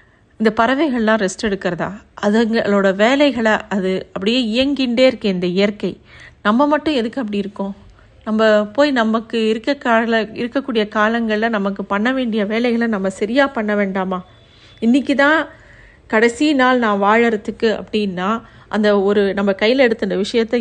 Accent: native